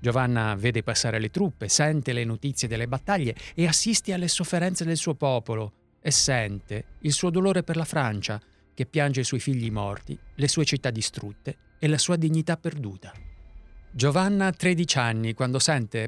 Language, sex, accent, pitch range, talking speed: Italian, male, native, 110-160 Hz, 170 wpm